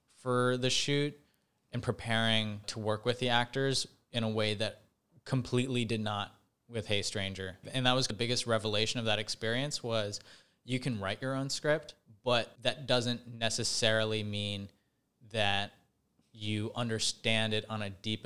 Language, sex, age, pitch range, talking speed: English, male, 20-39, 105-125 Hz, 160 wpm